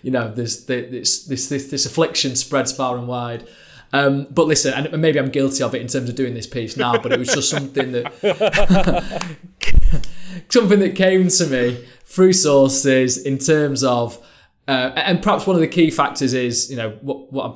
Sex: male